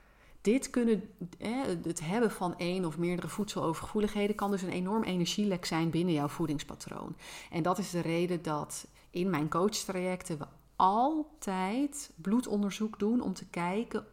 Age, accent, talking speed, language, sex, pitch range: 30-49, Dutch, 145 wpm, Dutch, female, 170-220 Hz